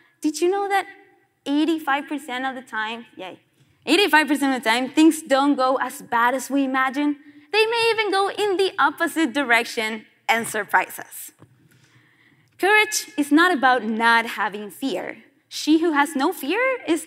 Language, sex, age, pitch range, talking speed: English, female, 20-39, 245-325 Hz, 160 wpm